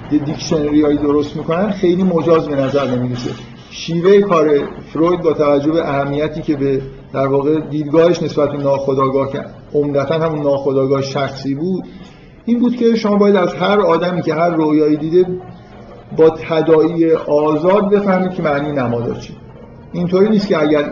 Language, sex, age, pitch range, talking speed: Persian, male, 50-69, 145-175 Hz, 150 wpm